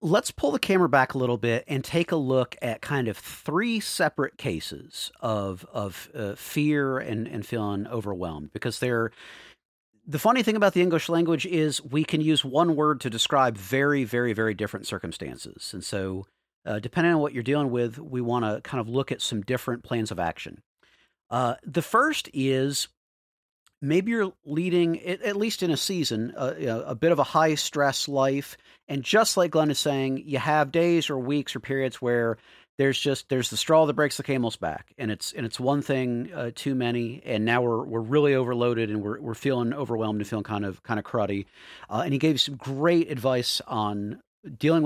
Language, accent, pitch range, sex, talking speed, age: English, American, 115-155 Hz, male, 200 wpm, 50-69